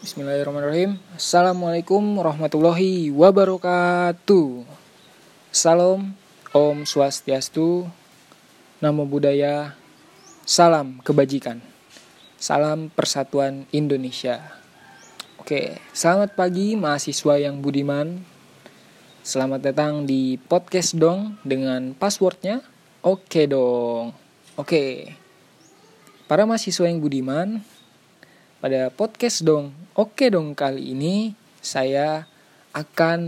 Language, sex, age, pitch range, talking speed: Indonesian, male, 20-39, 140-180 Hz, 80 wpm